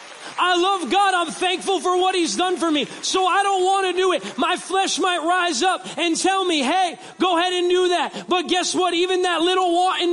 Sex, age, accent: male, 30-49, American